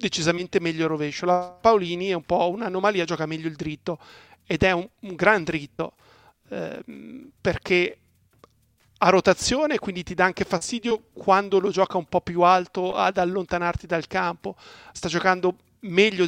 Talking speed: 160 wpm